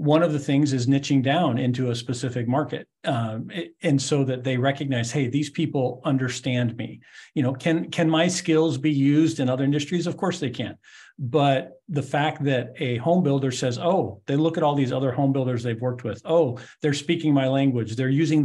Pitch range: 125-145 Hz